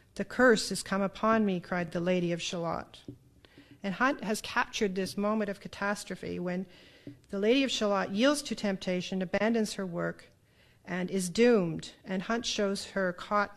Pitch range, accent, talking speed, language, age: 190-225 Hz, American, 170 wpm, English, 50-69